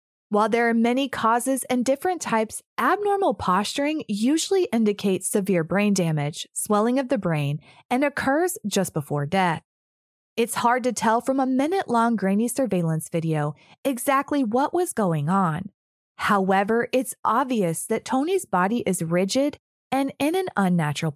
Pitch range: 175-260 Hz